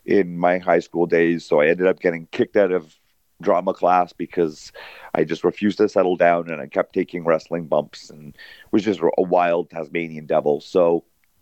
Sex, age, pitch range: male, 40-59, 85-105 Hz